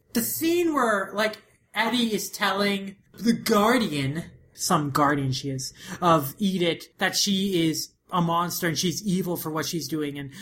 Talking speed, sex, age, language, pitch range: 160 wpm, male, 20-39, English, 150-195 Hz